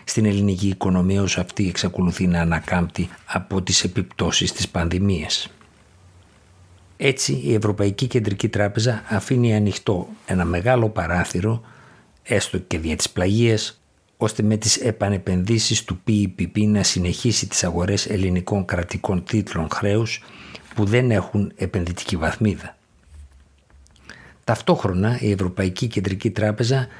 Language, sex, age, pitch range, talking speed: Greek, male, 50-69, 90-110 Hz, 115 wpm